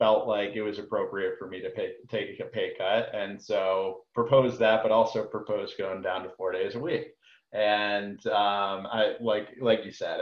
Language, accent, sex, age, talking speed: English, American, male, 30-49, 195 wpm